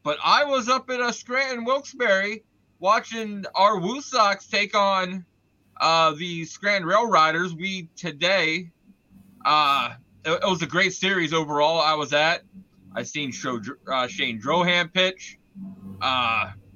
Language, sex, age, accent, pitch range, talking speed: English, male, 20-39, American, 150-205 Hz, 145 wpm